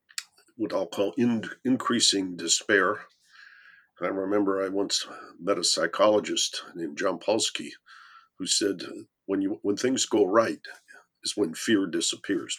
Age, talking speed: 50-69, 140 wpm